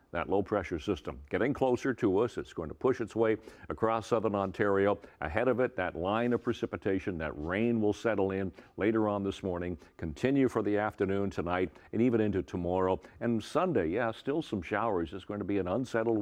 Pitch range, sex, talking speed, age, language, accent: 95-125 Hz, male, 200 wpm, 60-79, English, American